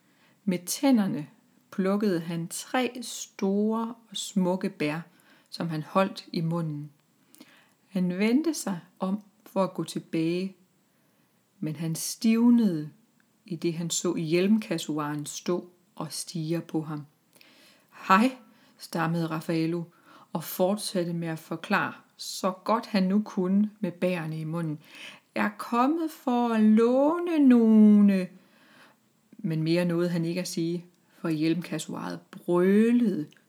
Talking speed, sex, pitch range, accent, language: 125 wpm, female, 170-235 Hz, native, Danish